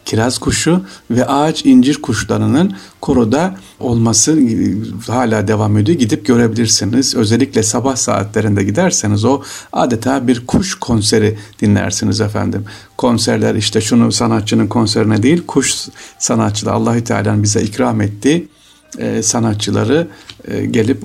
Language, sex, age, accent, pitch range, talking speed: Turkish, male, 50-69, native, 105-120 Hz, 110 wpm